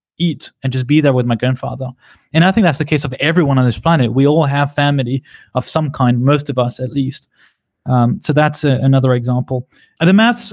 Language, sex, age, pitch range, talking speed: English, male, 20-39, 135-180 Hz, 220 wpm